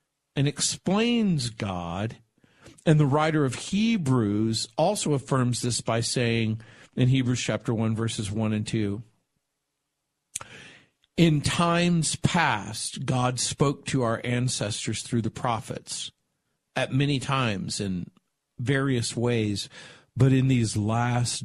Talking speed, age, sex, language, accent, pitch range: 120 wpm, 50-69, male, English, American, 110-140 Hz